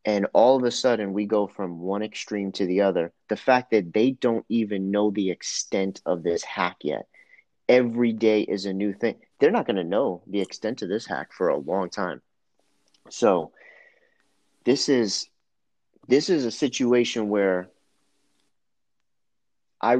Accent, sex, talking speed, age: American, male, 165 wpm, 30-49